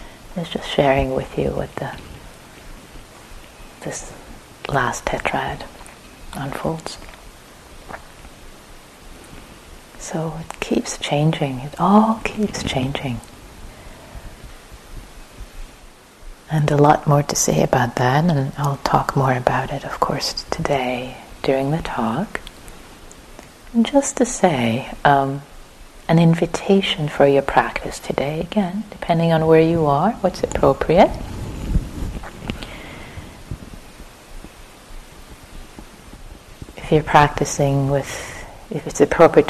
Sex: female